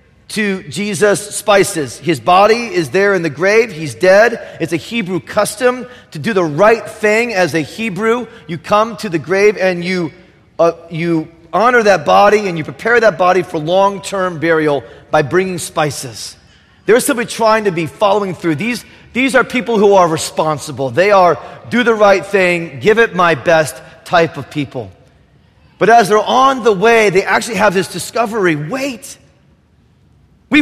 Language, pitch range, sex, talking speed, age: English, 175-250 Hz, male, 170 wpm, 40-59